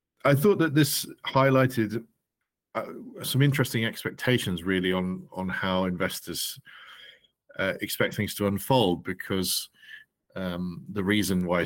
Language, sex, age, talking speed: English, male, 40-59, 125 wpm